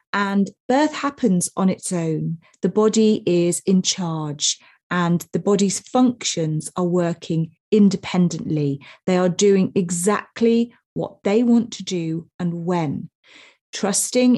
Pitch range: 170-215 Hz